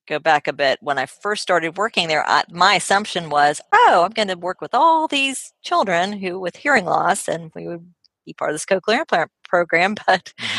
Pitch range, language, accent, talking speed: 140-175 Hz, English, American, 210 wpm